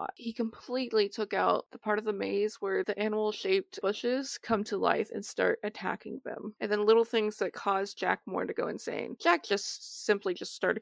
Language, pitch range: English, 205-245 Hz